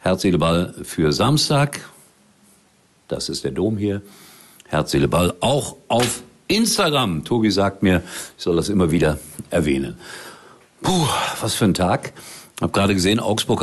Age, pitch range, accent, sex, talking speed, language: 50-69, 85-115 Hz, German, male, 145 wpm, German